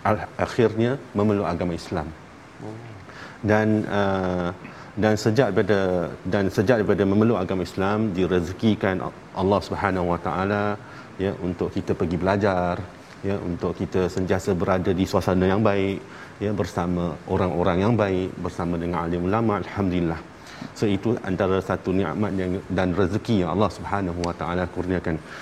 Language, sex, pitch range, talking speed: Malayalam, male, 90-105 Hz, 135 wpm